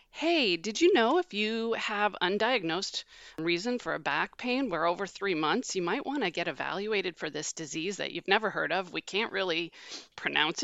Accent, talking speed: American, 195 wpm